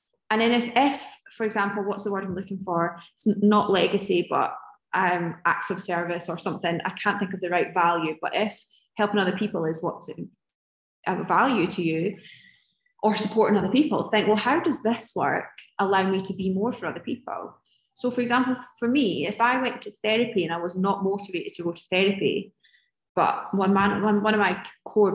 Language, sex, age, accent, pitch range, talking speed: English, female, 20-39, British, 185-220 Hz, 200 wpm